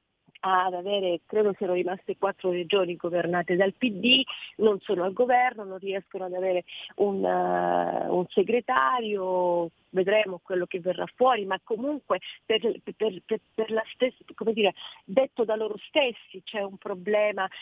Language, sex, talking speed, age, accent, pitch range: Italian, female, 150 wpm, 40-59, native, 185-220 Hz